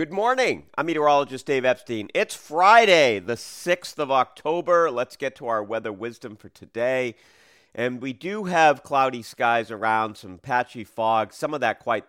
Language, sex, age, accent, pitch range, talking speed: English, male, 40-59, American, 105-135 Hz, 170 wpm